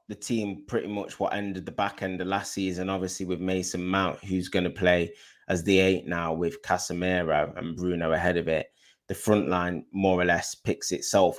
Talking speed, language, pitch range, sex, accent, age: 205 wpm, English, 85-95 Hz, male, British, 20-39